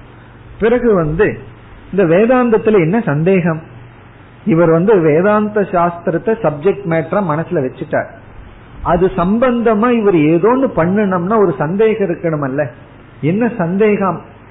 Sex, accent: male, native